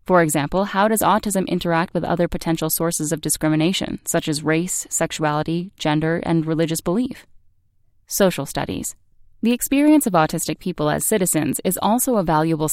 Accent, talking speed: American, 155 wpm